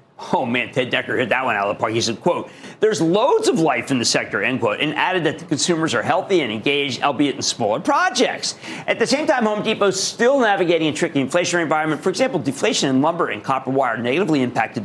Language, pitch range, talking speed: English, 135-185 Hz, 235 wpm